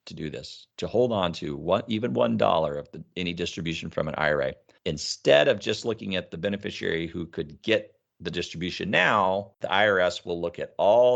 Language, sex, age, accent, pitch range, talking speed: English, male, 40-59, American, 80-100 Hz, 185 wpm